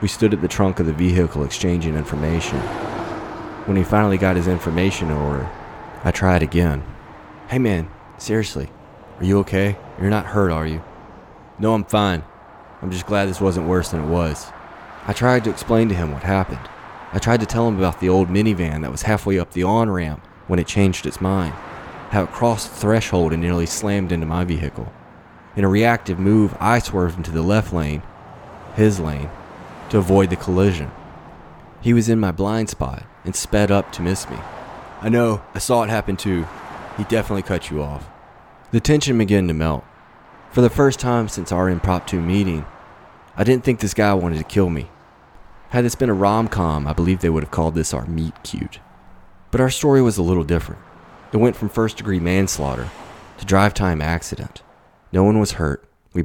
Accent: American